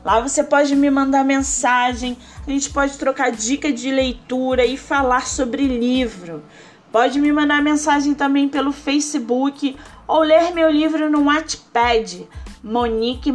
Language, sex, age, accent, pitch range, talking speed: Portuguese, female, 20-39, Brazilian, 245-295 Hz, 140 wpm